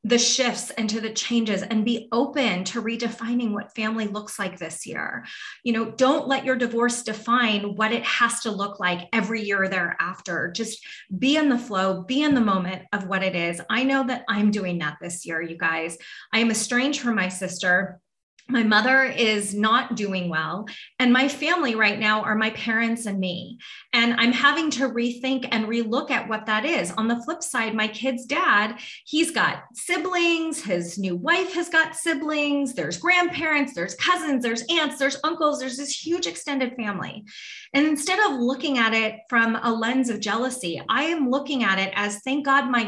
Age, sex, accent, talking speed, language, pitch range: 30-49, female, American, 195 wpm, English, 205-270 Hz